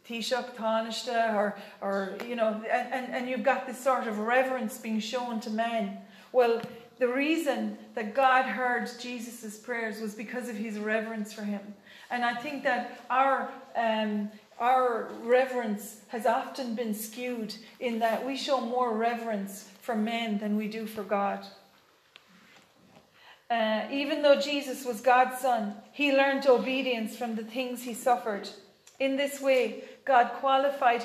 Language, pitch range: English, 225-255 Hz